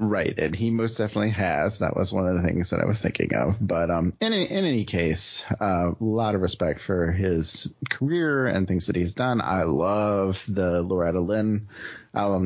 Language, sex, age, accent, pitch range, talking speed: English, male, 30-49, American, 90-115 Hz, 195 wpm